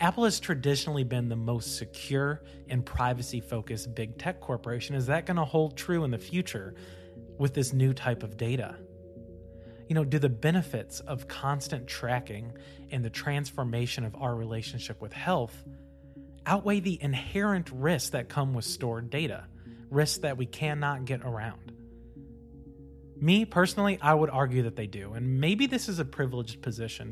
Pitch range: 115-145 Hz